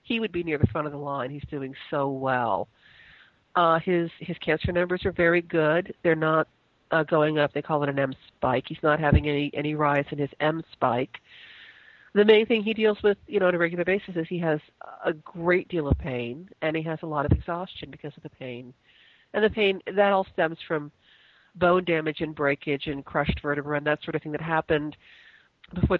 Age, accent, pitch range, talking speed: 50-69, American, 145-180 Hz, 220 wpm